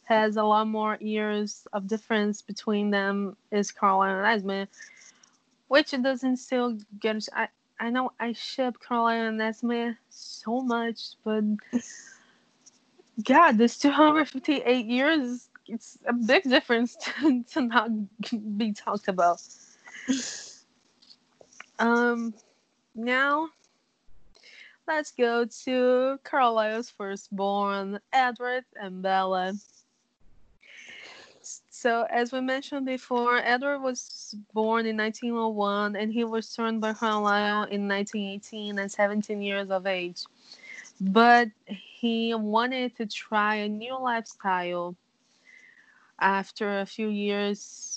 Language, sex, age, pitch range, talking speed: English, female, 20-39, 205-245 Hz, 110 wpm